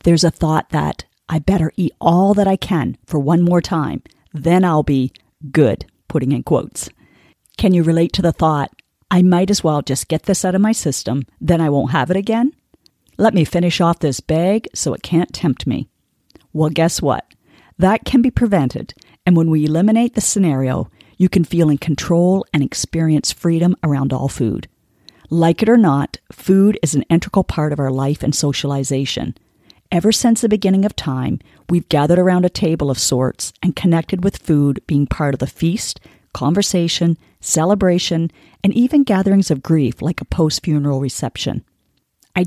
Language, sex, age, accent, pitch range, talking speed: English, female, 40-59, American, 145-190 Hz, 180 wpm